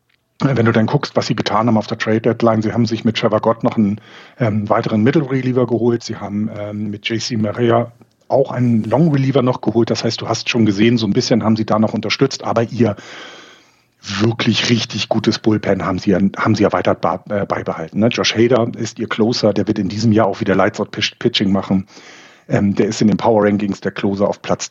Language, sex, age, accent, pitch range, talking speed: German, male, 40-59, German, 105-120 Hz, 220 wpm